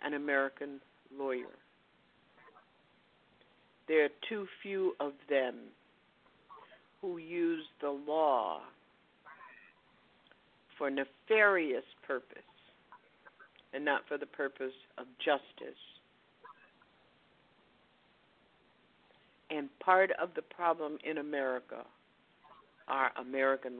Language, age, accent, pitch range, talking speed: English, 60-79, American, 140-190 Hz, 80 wpm